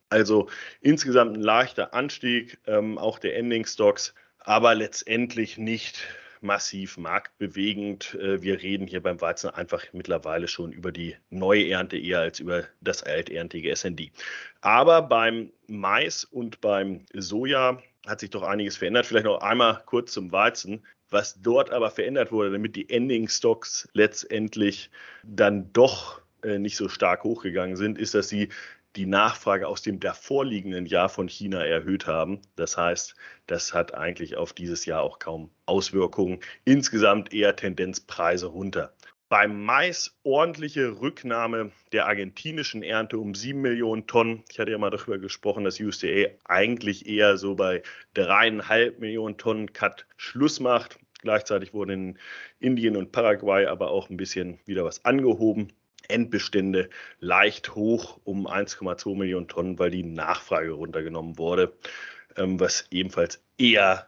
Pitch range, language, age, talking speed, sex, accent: 95-120 Hz, German, 30-49, 140 wpm, male, German